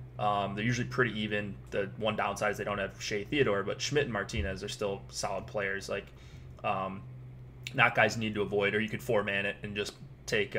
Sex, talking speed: male, 215 wpm